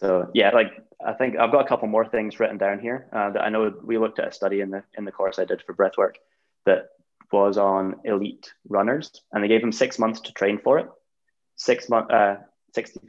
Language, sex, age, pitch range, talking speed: English, male, 20-39, 100-115 Hz, 230 wpm